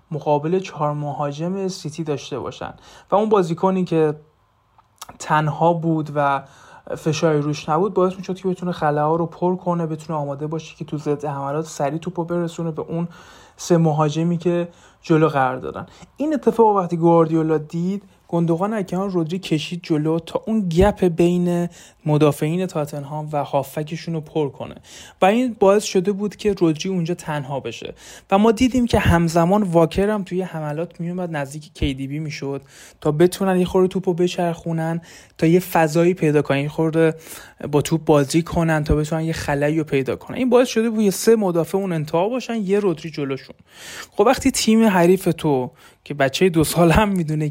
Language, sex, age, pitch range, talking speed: Persian, male, 30-49, 150-185 Hz, 170 wpm